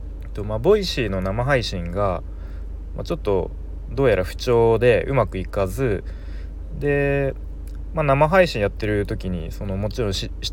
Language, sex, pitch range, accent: Japanese, male, 75-115 Hz, native